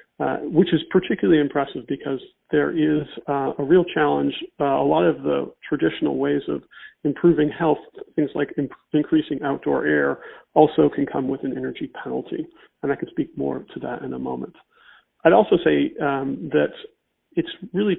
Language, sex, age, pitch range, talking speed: English, male, 40-59, 135-160 Hz, 175 wpm